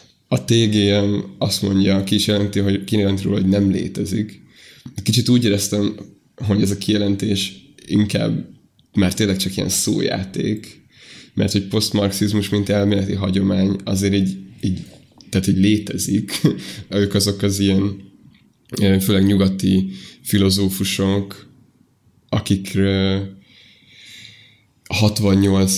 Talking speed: 110 wpm